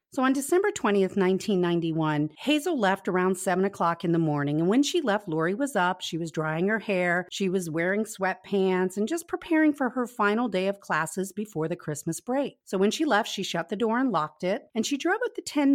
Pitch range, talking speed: 175-250 Hz, 225 wpm